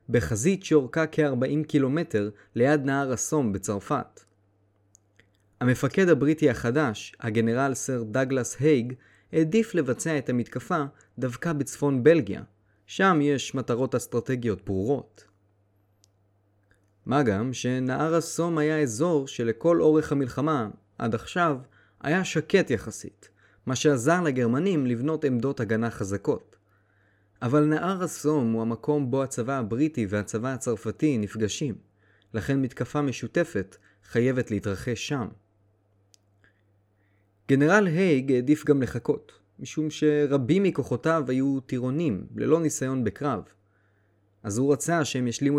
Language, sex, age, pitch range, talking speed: Hebrew, male, 20-39, 105-150 Hz, 110 wpm